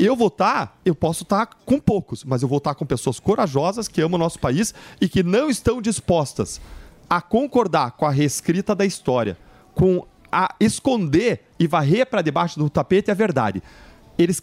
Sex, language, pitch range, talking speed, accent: male, Portuguese, 150-210 Hz, 185 wpm, Brazilian